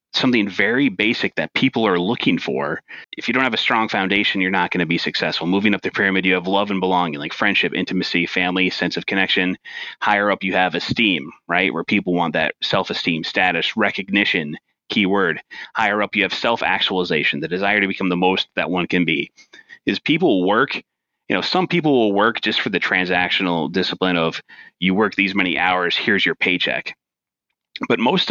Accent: American